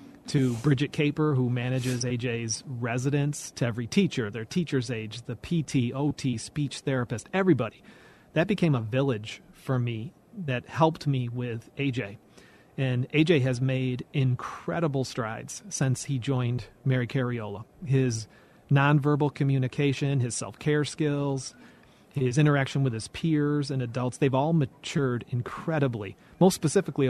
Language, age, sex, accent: English, 40-59, male, American